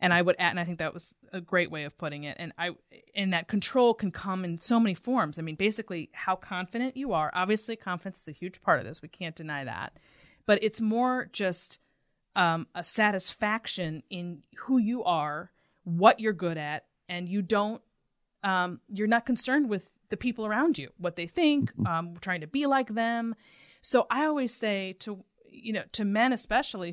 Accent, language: American, English